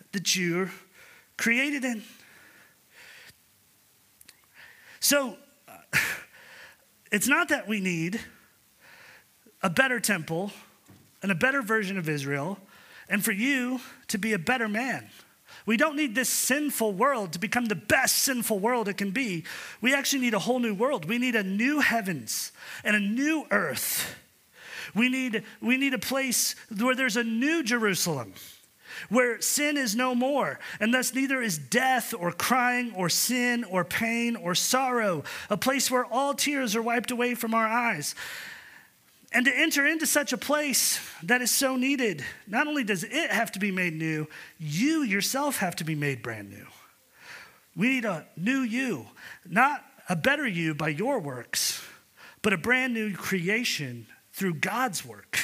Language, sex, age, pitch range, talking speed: English, male, 40-59, 190-260 Hz, 160 wpm